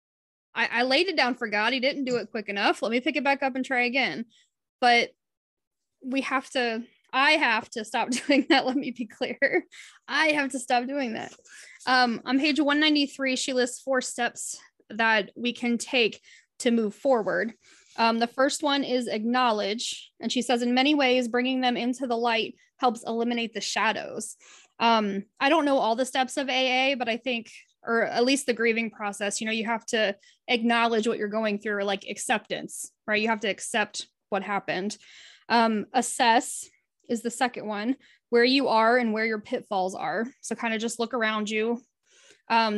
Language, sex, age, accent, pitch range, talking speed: English, female, 20-39, American, 220-260 Hz, 190 wpm